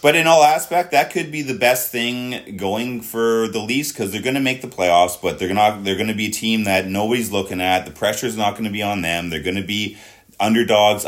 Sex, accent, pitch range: male, American, 90-110 Hz